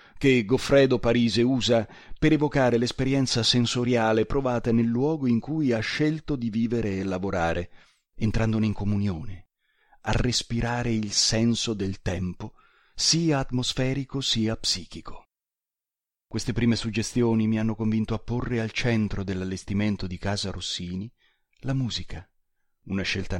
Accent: native